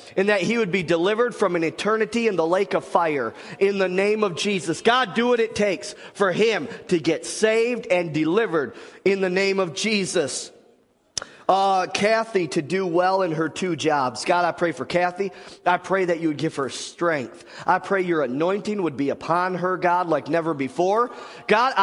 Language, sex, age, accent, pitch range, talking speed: English, male, 40-59, American, 165-210 Hz, 195 wpm